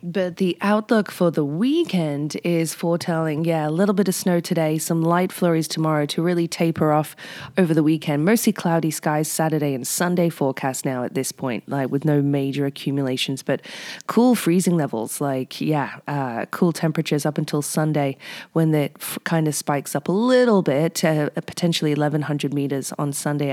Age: 20-39